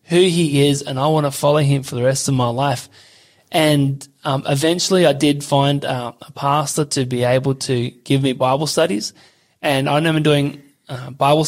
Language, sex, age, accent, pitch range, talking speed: English, male, 20-39, Australian, 125-150 Hz, 200 wpm